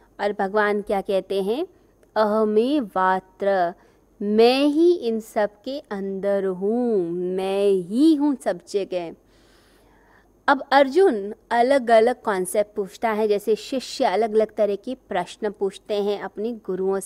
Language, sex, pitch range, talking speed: Hindi, female, 200-255 Hz, 130 wpm